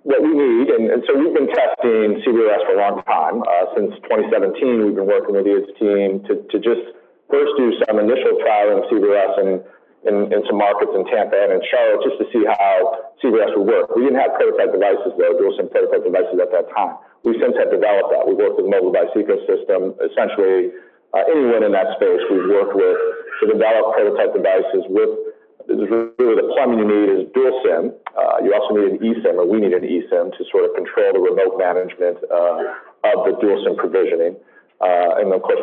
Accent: American